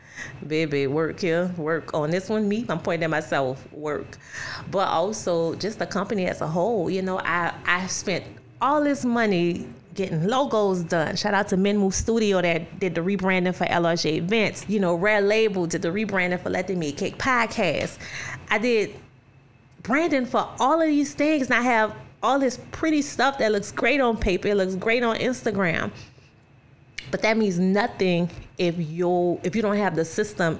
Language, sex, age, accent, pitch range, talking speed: English, female, 30-49, American, 155-210 Hz, 180 wpm